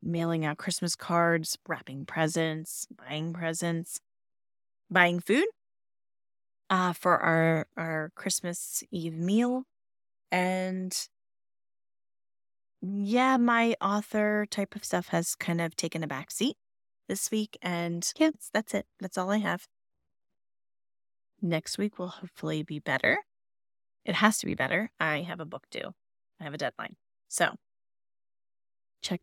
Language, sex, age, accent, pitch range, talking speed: English, female, 20-39, American, 135-200 Hz, 125 wpm